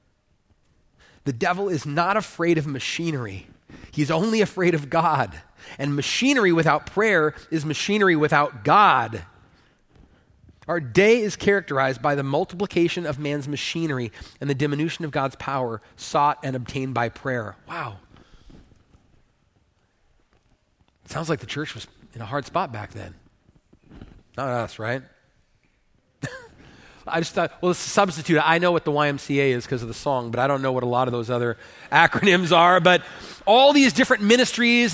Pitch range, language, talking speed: 130-200 Hz, English, 155 wpm